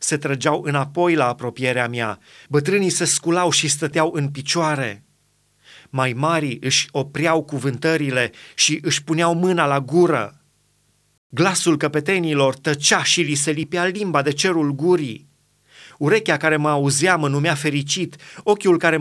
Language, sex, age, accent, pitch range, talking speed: Romanian, male, 30-49, native, 135-165 Hz, 140 wpm